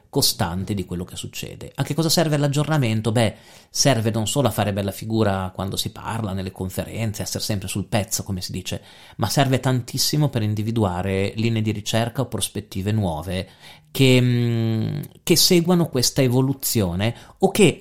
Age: 40-59